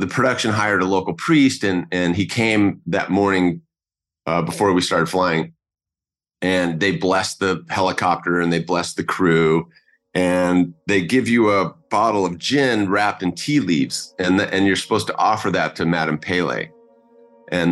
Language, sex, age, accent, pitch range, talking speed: English, male, 30-49, American, 85-110 Hz, 170 wpm